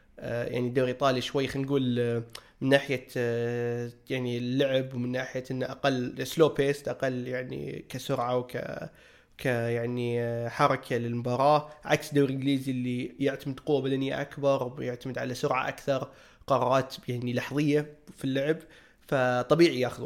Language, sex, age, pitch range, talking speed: Arabic, male, 20-39, 125-150 Hz, 125 wpm